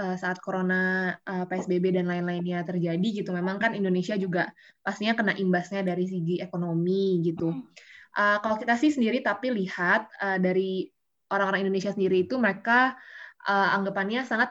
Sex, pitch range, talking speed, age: female, 175-210 Hz, 155 wpm, 20-39